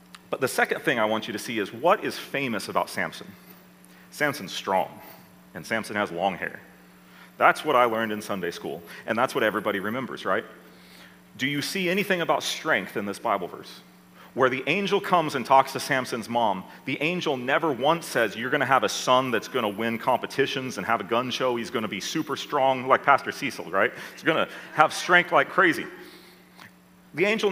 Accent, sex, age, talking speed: American, male, 40-59, 195 wpm